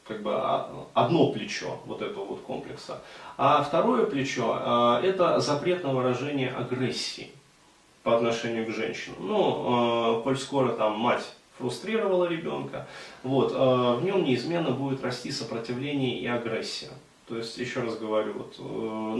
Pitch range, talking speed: 115-135 Hz, 145 wpm